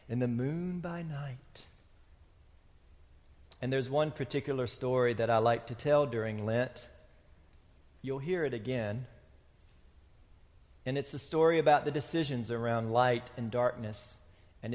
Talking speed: 135 wpm